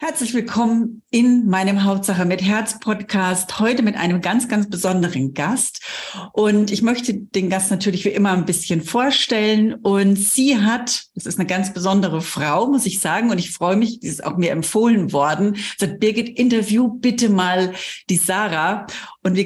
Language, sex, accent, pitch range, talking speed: German, female, German, 175-215 Hz, 165 wpm